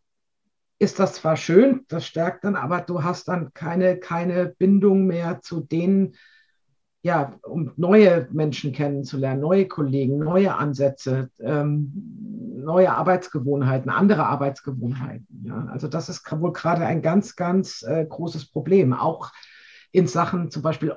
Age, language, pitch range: 50-69, German, 150-190 Hz